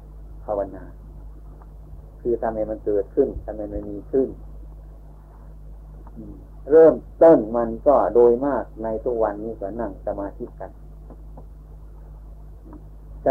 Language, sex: Thai, male